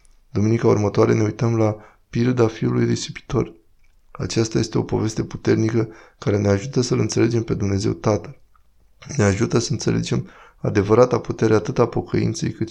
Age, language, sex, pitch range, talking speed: 20-39, Romanian, male, 105-120 Hz, 145 wpm